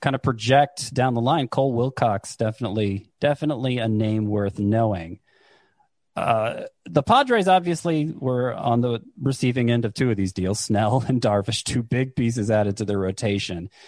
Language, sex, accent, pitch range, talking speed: English, male, American, 110-145 Hz, 165 wpm